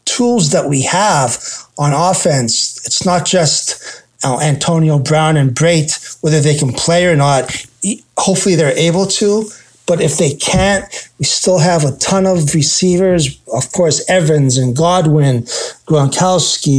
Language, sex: English, male